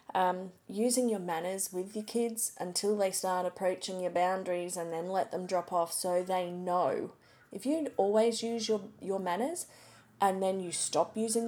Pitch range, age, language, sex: 180-230 Hz, 30-49, English, female